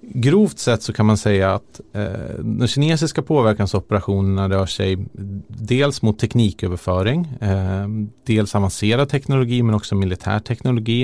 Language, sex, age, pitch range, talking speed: Swedish, male, 30-49, 95-120 Hz, 130 wpm